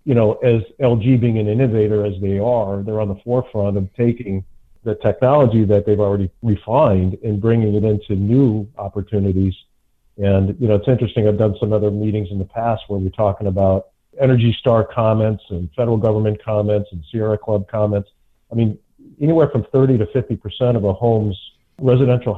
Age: 50-69